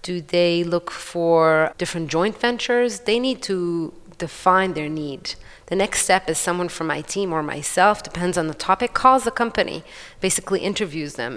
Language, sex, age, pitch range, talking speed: German, female, 30-49, 160-190 Hz, 175 wpm